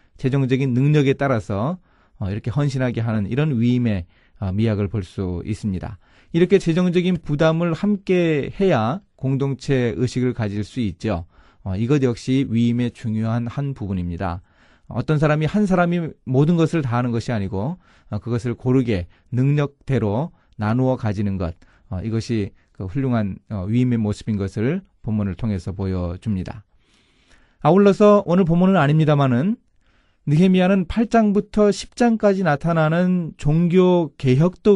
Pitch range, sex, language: 110-165 Hz, male, Korean